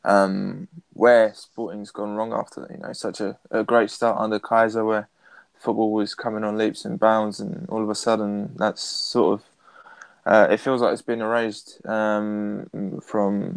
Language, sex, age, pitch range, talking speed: English, male, 10-29, 105-115 Hz, 170 wpm